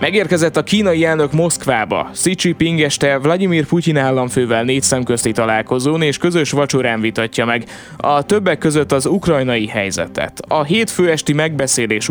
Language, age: Hungarian, 20-39